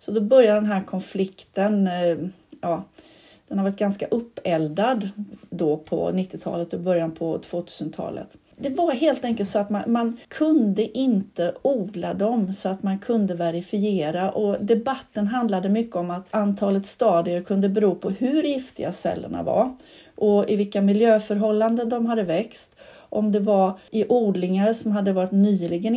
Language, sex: Swedish, female